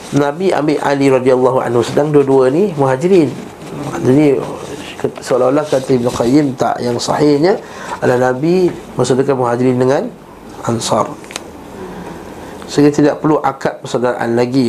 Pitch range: 125-150 Hz